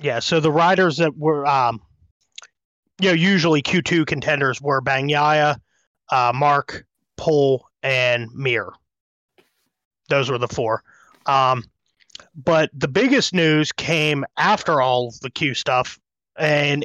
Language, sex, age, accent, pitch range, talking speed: English, male, 30-49, American, 140-170 Hz, 130 wpm